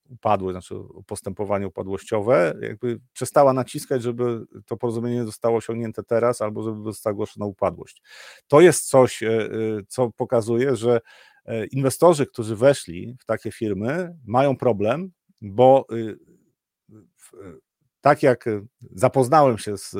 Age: 40-59